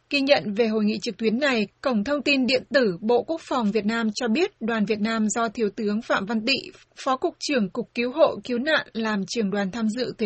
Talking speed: 250 wpm